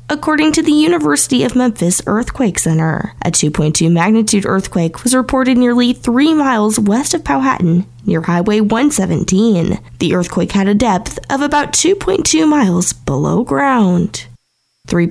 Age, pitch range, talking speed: 10-29, 175-265 Hz, 135 wpm